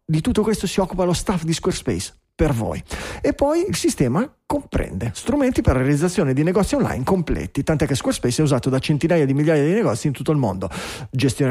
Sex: male